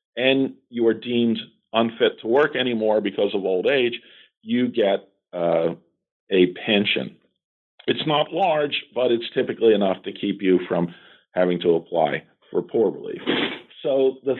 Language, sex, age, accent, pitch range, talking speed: English, male, 50-69, American, 105-175 Hz, 150 wpm